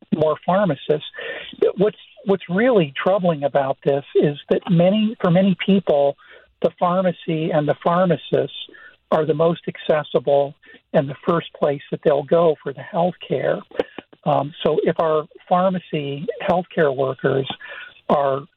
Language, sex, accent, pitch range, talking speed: English, male, American, 145-185 Hz, 140 wpm